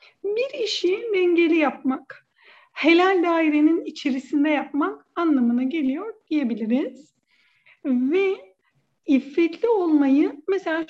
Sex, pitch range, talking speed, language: female, 255-350 Hz, 85 wpm, Turkish